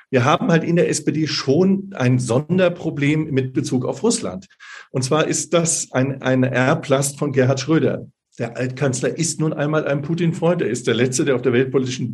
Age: 50-69